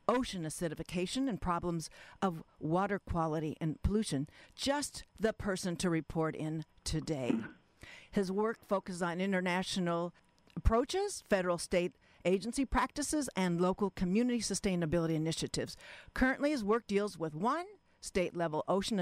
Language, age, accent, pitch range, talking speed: English, 50-69, American, 160-220 Hz, 125 wpm